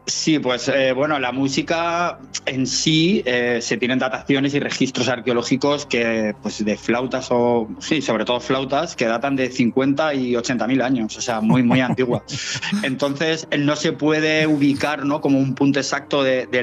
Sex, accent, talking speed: male, Spanish, 175 wpm